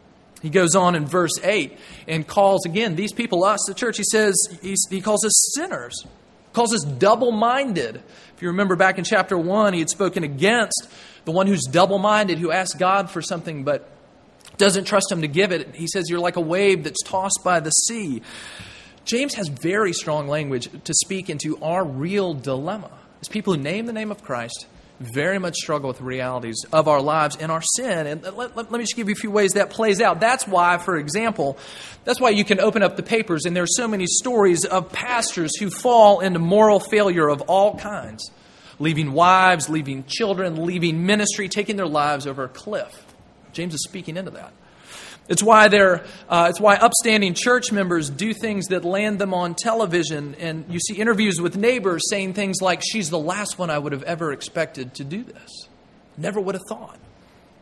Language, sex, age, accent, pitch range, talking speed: English, male, 30-49, American, 170-210 Hz, 200 wpm